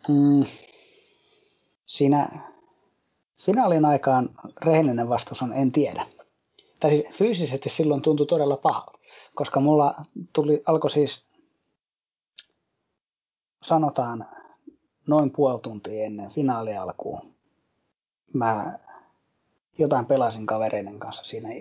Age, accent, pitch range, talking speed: 30-49, native, 130-160 Hz, 85 wpm